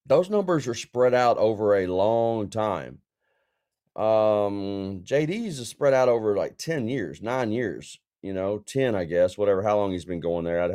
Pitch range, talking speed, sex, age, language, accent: 95-120 Hz, 185 wpm, male, 30-49, English, American